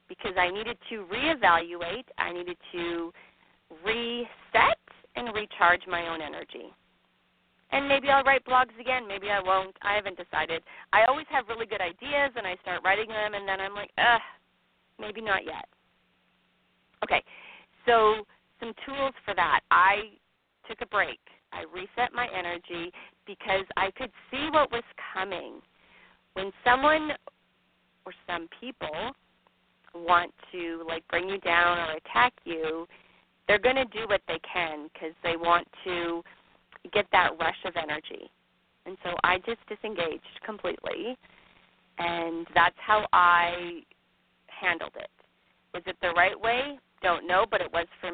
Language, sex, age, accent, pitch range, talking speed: English, female, 30-49, American, 170-230 Hz, 150 wpm